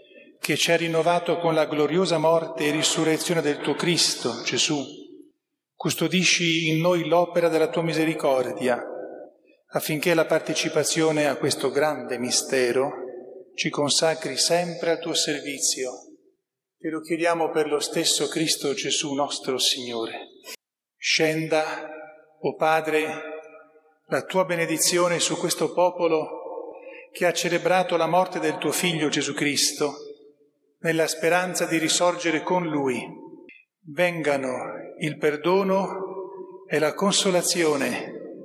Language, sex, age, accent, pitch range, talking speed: Italian, male, 40-59, native, 150-175 Hz, 115 wpm